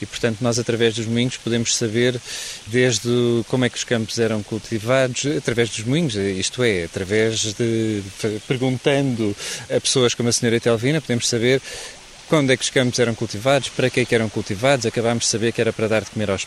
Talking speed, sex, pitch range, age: 200 wpm, male, 115-135 Hz, 20-39